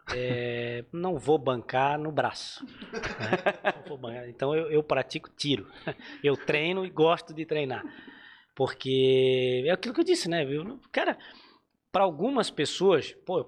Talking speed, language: 150 wpm, Portuguese